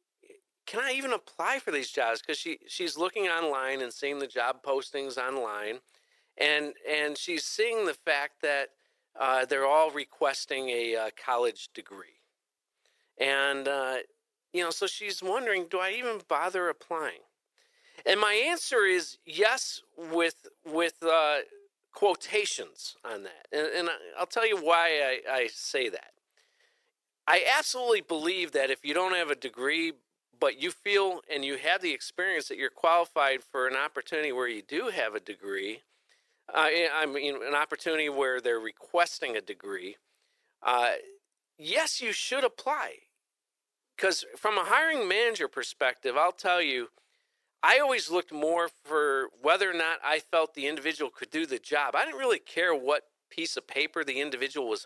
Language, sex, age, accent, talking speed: English, male, 50-69, American, 160 wpm